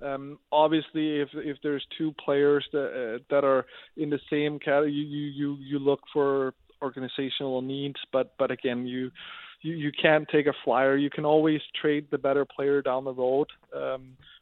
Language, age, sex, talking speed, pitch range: English, 20-39, male, 180 wpm, 135-150 Hz